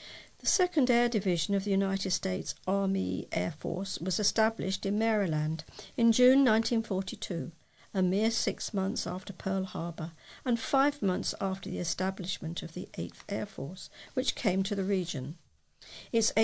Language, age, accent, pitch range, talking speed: English, 60-79, British, 180-220 Hz, 155 wpm